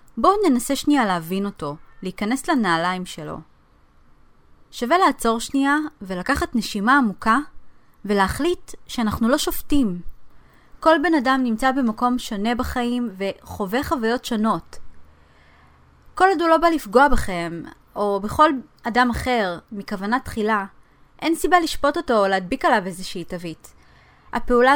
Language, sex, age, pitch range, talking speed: Hebrew, female, 20-39, 205-290 Hz, 125 wpm